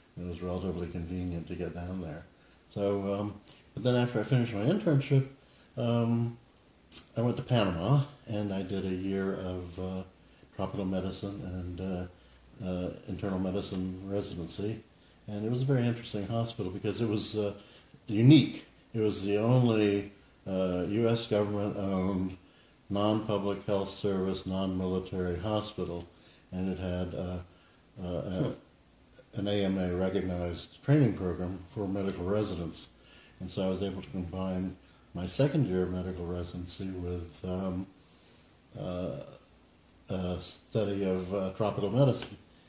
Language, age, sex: English, 60-79, male